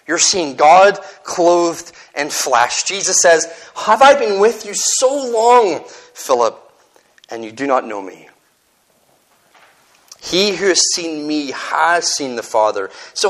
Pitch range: 140-225 Hz